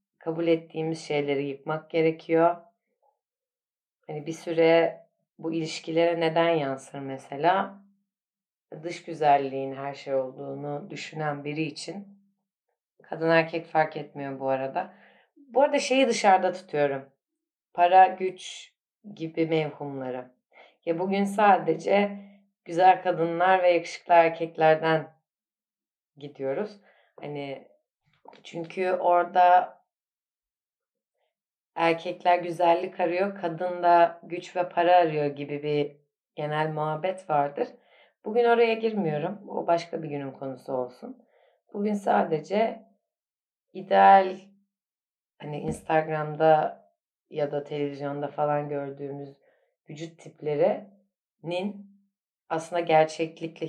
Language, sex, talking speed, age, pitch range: Turkish, female, 95 wpm, 30-49, 150-185 Hz